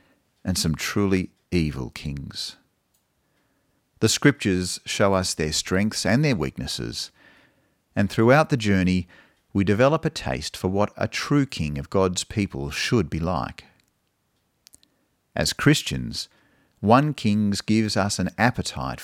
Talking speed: 130 wpm